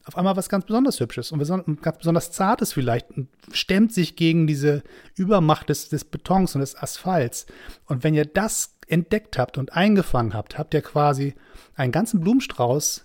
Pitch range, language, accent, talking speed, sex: 130-170 Hz, German, German, 170 wpm, male